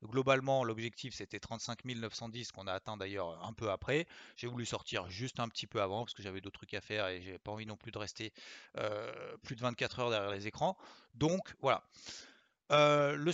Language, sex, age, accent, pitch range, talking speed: French, male, 30-49, French, 110-135 Hz, 210 wpm